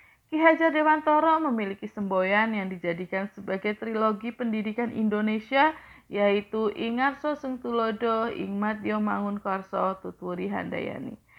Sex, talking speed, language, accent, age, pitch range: female, 105 wpm, Indonesian, native, 30-49, 195-255 Hz